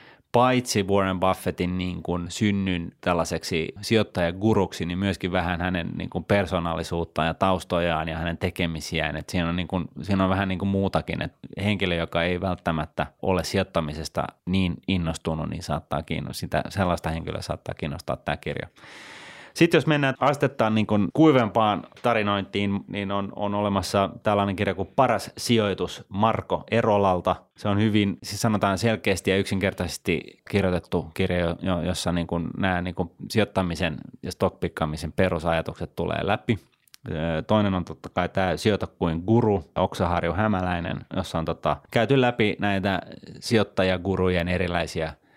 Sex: male